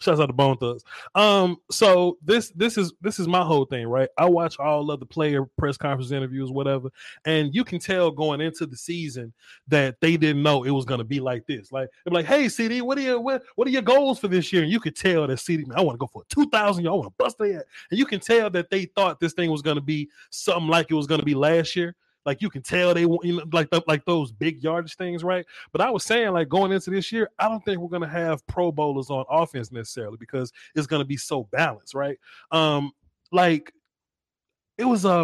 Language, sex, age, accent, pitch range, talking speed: English, male, 30-49, American, 145-185 Hz, 250 wpm